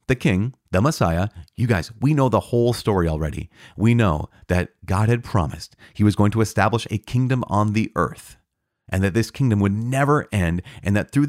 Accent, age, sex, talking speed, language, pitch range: American, 30-49, male, 200 wpm, English, 90-120 Hz